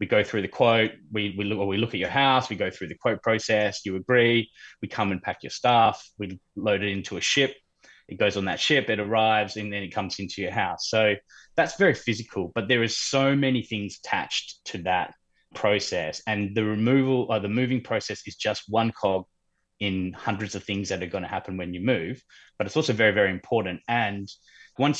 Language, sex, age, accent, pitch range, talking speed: English, male, 20-39, Australian, 100-115 Hz, 225 wpm